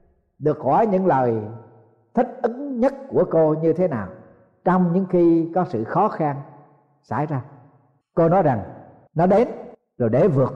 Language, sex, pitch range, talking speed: Vietnamese, male, 155-230 Hz, 165 wpm